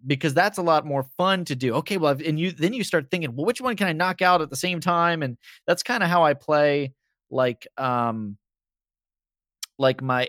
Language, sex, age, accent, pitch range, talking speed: English, male, 20-39, American, 120-150 Hz, 225 wpm